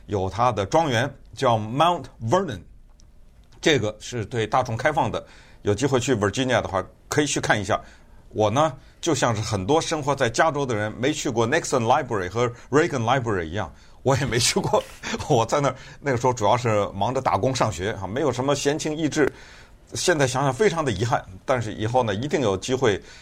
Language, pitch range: Chinese, 110-160 Hz